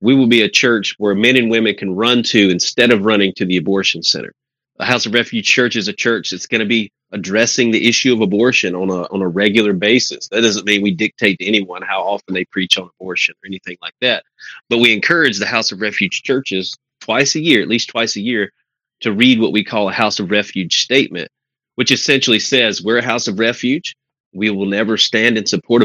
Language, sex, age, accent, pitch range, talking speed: English, male, 30-49, American, 100-120 Hz, 230 wpm